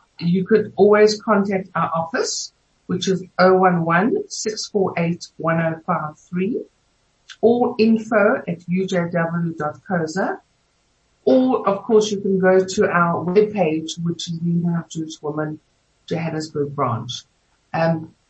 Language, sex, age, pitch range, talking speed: English, female, 60-79, 165-205 Hz, 100 wpm